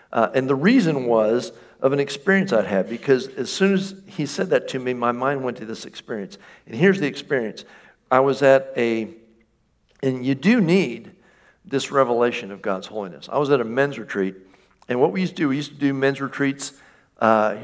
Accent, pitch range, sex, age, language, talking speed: American, 115-140 Hz, male, 50-69, English, 210 wpm